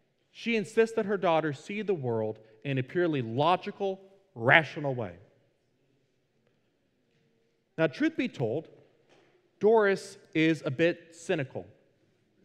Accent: American